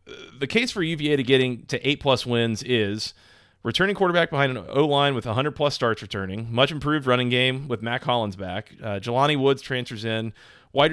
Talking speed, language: 175 wpm, English